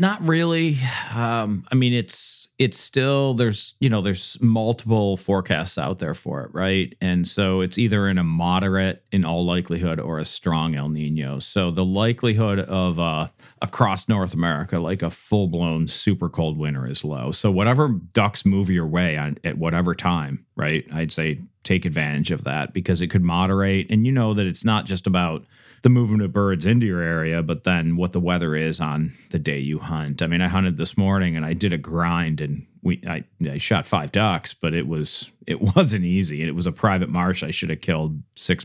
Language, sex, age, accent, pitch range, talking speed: English, male, 40-59, American, 80-100 Hz, 200 wpm